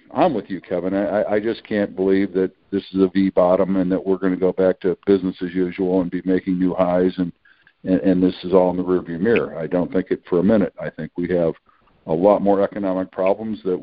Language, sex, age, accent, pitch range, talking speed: English, male, 60-79, American, 90-105 Hz, 245 wpm